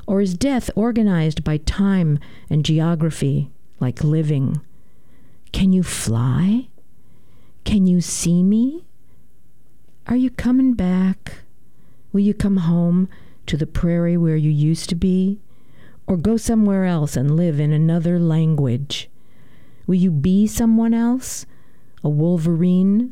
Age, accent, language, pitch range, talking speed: 50-69, American, English, 155-215 Hz, 125 wpm